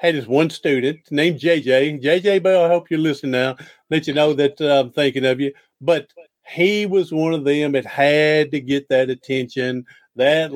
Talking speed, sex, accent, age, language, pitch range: 200 wpm, male, American, 50-69, English, 135-175 Hz